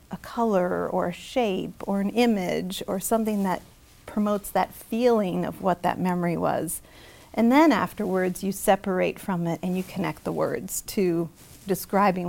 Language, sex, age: English, female, 40-59